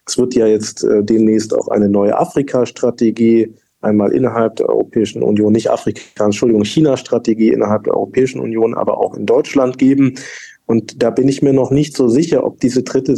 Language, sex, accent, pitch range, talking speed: German, male, German, 115-130 Hz, 180 wpm